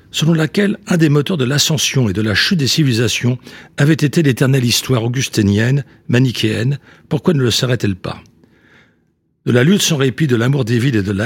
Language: French